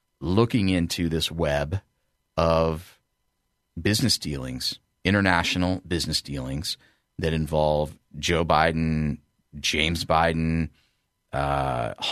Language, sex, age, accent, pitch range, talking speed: English, male, 30-49, American, 75-105 Hz, 85 wpm